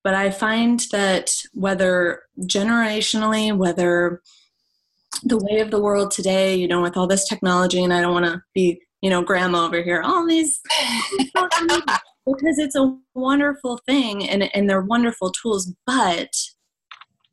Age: 20-39